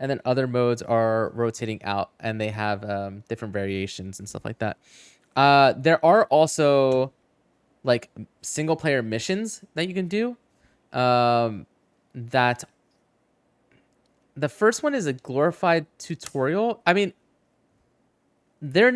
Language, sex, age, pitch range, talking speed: English, male, 20-39, 120-165 Hz, 130 wpm